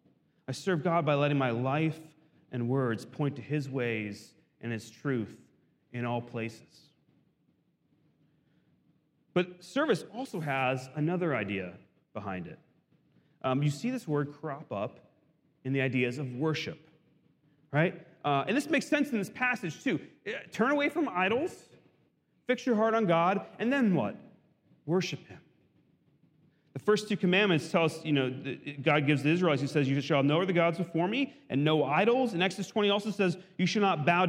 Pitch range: 145-195 Hz